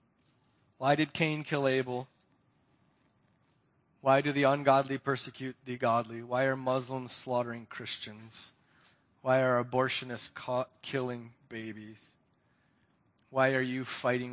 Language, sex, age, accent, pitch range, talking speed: English, male, 30-49, American, 115-135 Hz, 115 wpm